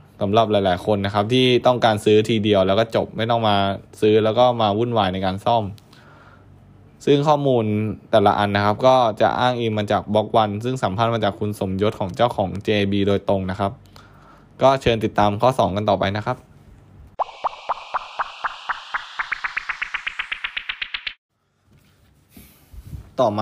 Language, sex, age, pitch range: Thai, male, 10-29, 100-120 Hz